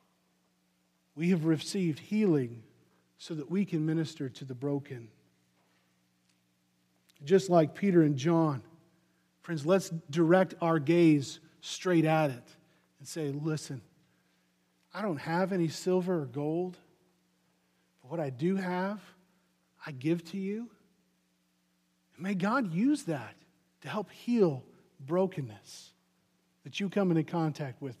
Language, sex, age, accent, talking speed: English, male, 50-69, American, 125 wpm